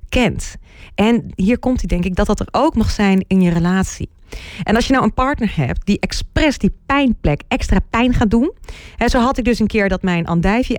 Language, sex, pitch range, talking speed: Dutch, female, 190-255 Hz, 230 wpm